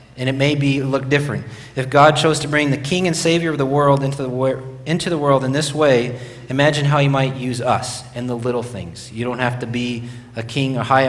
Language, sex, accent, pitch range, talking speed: English, male, American, 120-140 Hz, 245 wpm